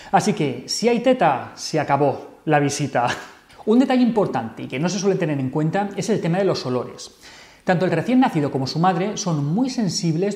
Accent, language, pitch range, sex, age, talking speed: Spanish, Spanish, 145-195 Hz, male, 30-49, 210 wpm